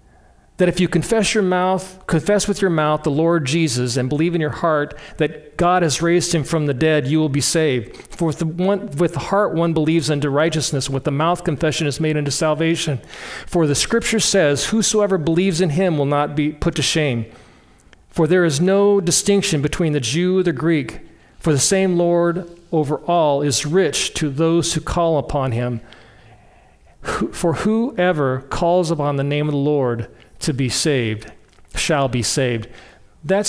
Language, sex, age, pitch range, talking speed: English, male, 40-59, 135-170 Hz, 185 wpm